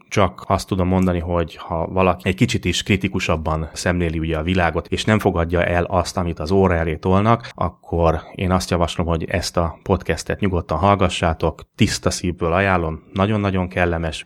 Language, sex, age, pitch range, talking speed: Hungarian, male, 30-49, 85-100 Hz, 170 wpm